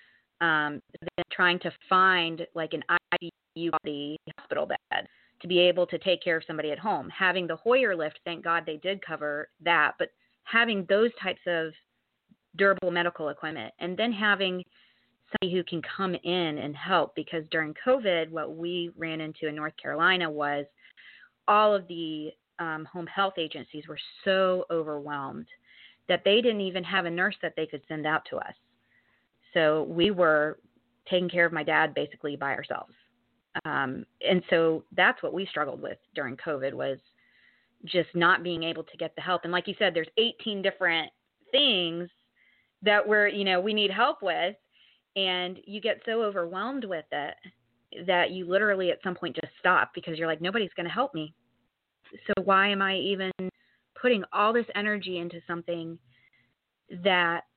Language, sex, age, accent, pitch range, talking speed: English, female, 30-49, American, 160-190 Hz, 170 wpm